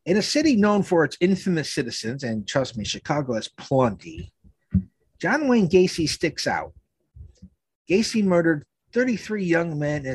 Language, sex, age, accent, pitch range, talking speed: English, male, 50-69, American, 125-195 Hz, 150 wpm